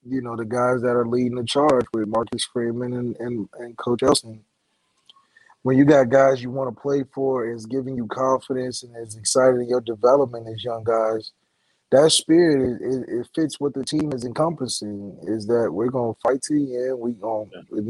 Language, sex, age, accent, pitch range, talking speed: English, male, 20-39, American, 115-135 Hz, 205 wpm